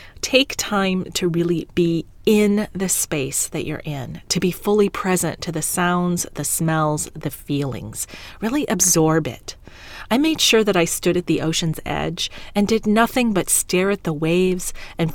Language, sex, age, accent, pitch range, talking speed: English, female, 30-49, American, 155-195 Hz, 175 wpm